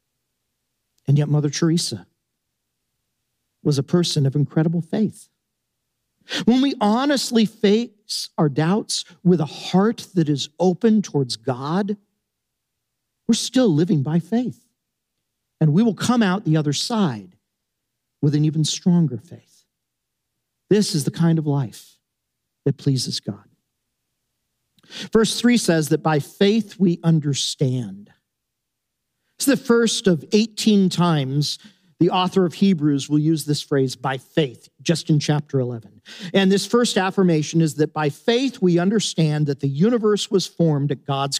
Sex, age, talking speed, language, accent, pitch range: male, 50-69, 140 wpm, English, American, 150-210 Hz